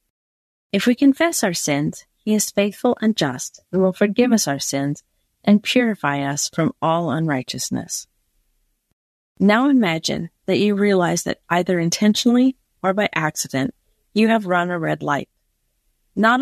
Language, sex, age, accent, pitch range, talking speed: English, female, 40-59, American, 165-225 Hz, 145 wpm